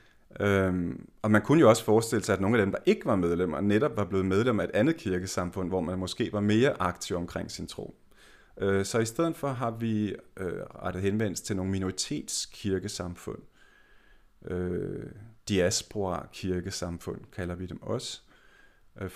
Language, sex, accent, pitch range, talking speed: Danish, male, native, 90-110 Hz, 165 wpm